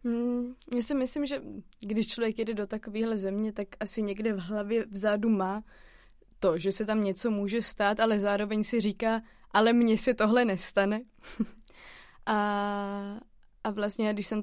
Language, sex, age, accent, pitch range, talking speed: Czech, female, 20-39, native, 210-235 Hz, 160 wpm